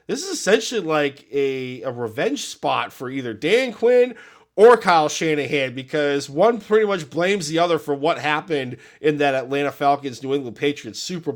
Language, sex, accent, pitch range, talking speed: English, male, American, 110-145 Hz, 170 wpm